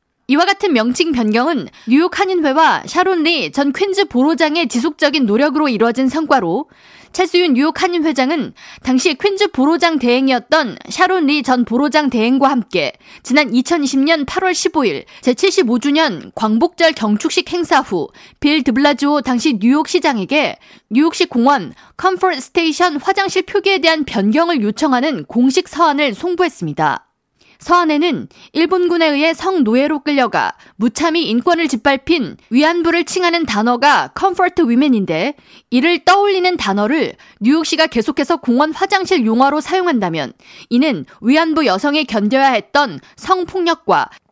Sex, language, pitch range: female, Korean, 255-340 Hz